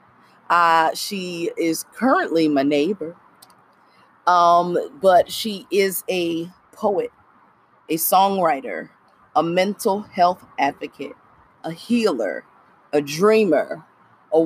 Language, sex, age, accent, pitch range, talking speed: English, female, 30-49, American, 170-240 Hz, 95 wpm